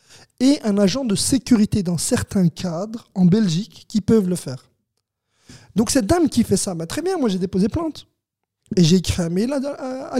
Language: French